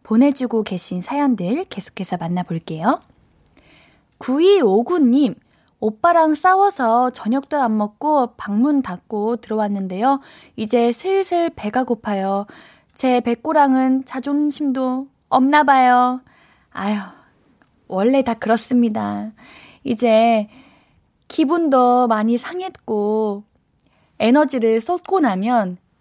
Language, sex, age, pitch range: Korean, female, 20-39, 215-290 Hz